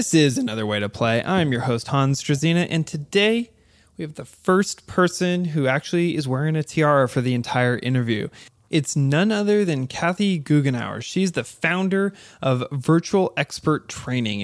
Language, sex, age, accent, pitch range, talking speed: English, male, 20-39, American, 125-160 Hz, 170 wpm